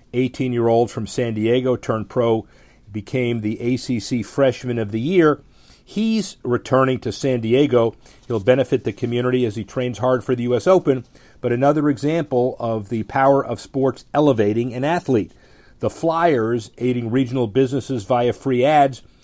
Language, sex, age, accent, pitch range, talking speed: English, male, 40-59, American, 110-135 Hz, 155 wpm